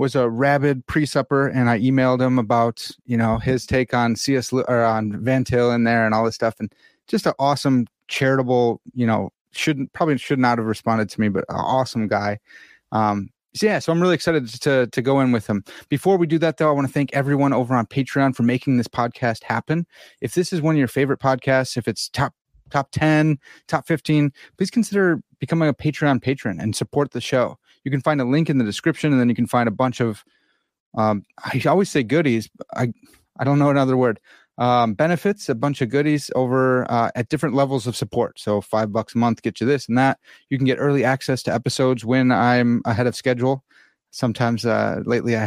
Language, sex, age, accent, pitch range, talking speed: English, male, 30-49, American, 120-145 Hz, 220 wpm